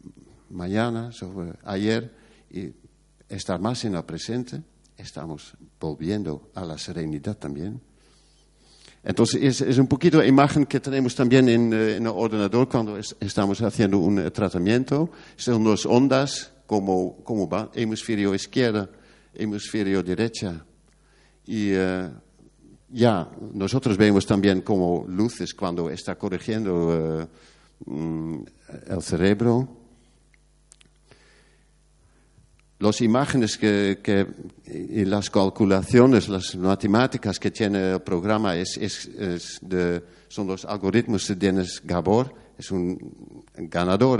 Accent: Dutch